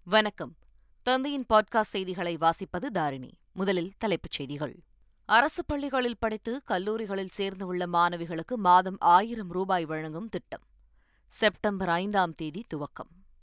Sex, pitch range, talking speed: female, 170-210 Hz, 110 wpm